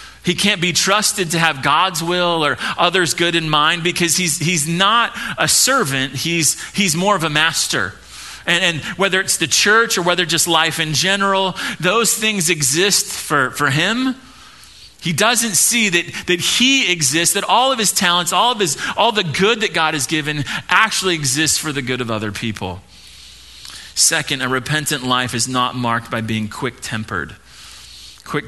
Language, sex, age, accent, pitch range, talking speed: English, male, 30-49, American, 140-185 Hz, 175 wpm